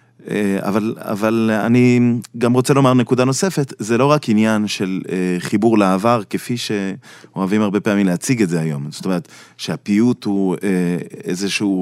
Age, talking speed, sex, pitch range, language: 20-39, 140 wpm, male, 100-125 Hz, Hebrew